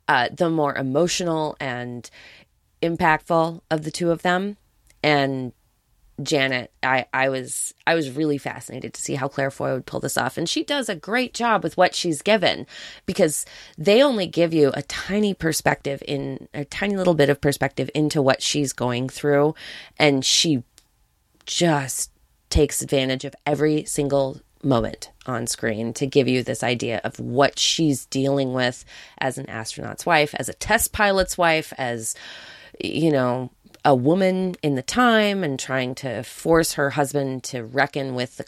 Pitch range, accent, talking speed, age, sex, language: 130-165 Hz, American, 165 wpm, 20-39, female, English